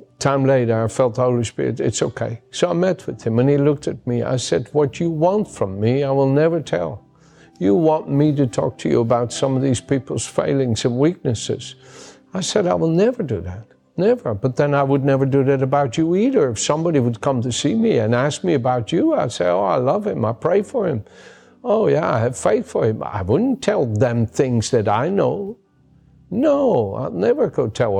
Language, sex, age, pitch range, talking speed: English, male, 60-79, 120-170 Hz, 225 wpm